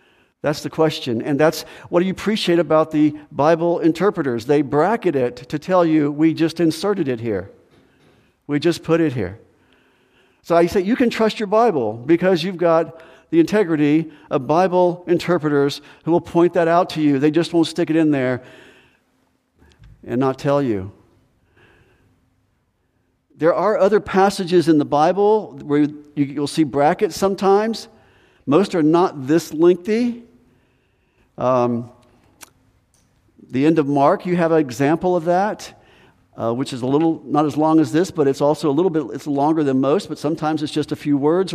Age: 50-69